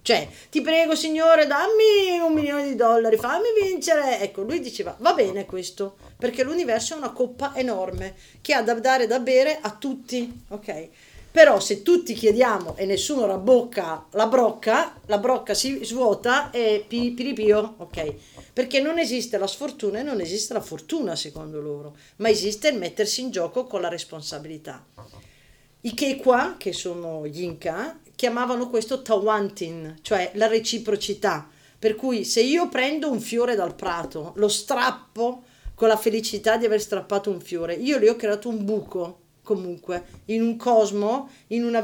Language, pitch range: Italian, 180-255 Hz